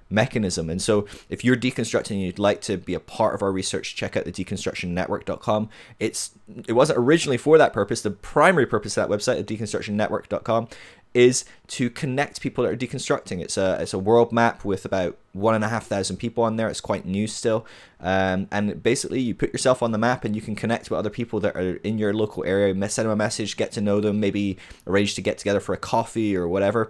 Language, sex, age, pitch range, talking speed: English, male, 20-39, 90-110 Hz, 230 wpm